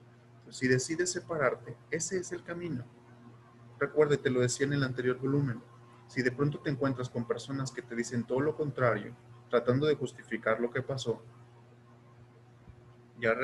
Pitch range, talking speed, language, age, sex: 120-140 Hz, 155 wpm, Spanish, 30-49, male